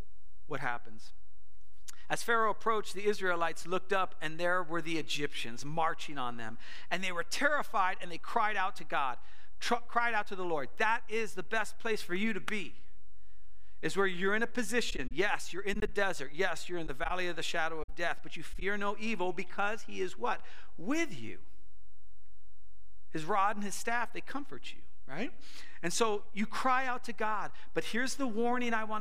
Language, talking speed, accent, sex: English, 200 wpm, American, male